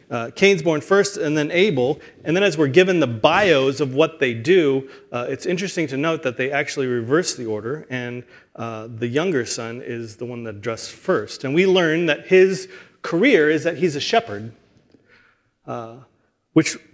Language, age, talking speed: English, 30-49, 190 wpm